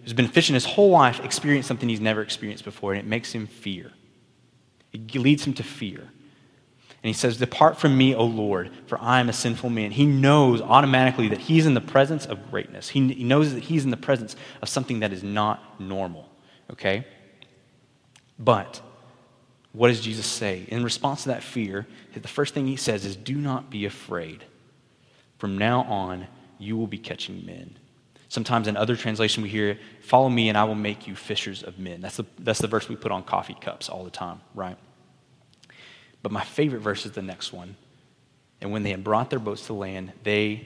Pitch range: 105-130 Hz